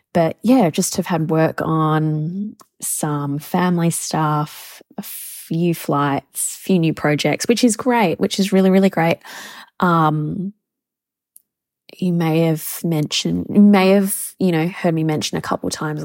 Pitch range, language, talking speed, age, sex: 160-205 Hz, English, 155 wpm, 20-39, female